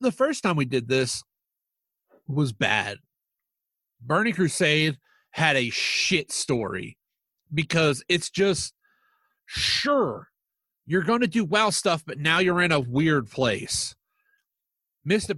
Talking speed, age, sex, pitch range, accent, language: 125 wpm, 40-59, male, 125-170 Hz, American, English